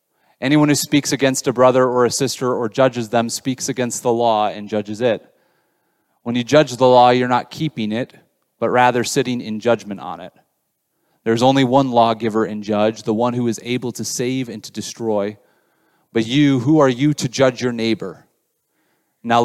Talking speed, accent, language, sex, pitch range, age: 190 wpm, American, English, male, 115-140 Hz, 30-49